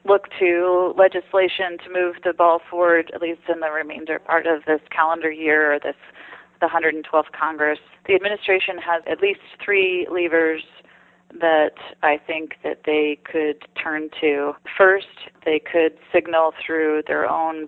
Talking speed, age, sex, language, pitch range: 155 wpm, 30-49, female, English, 150-165 Hz